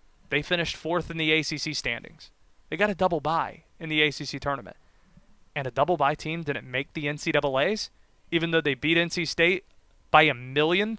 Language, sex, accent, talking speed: English, male, American, 175 wpm